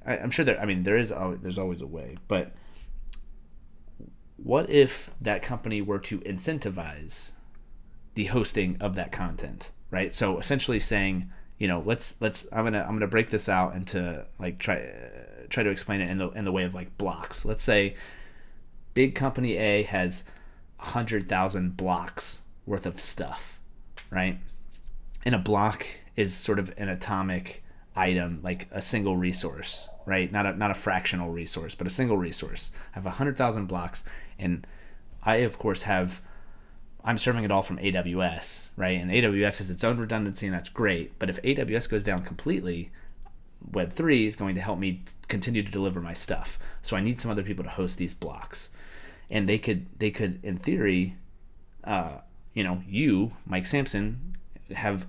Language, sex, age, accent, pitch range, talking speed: English, male, 30-49, American, 90-105 Hz, 170 wpm